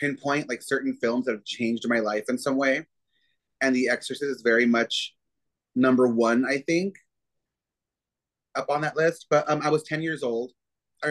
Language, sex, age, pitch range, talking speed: English, male, 30-49, 115-140 Hz, 185 wpm